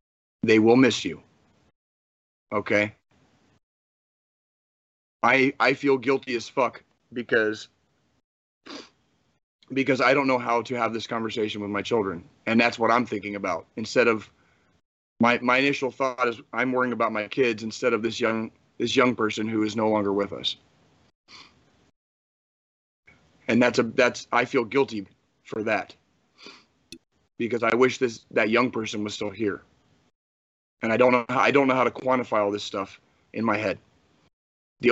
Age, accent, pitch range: 30-49, American, 105-125 Hz